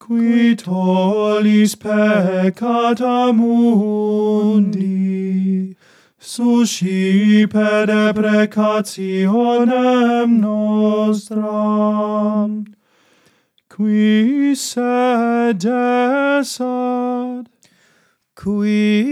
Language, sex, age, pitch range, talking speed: English, male, 30-49, 210-240 Hz, 35 wpm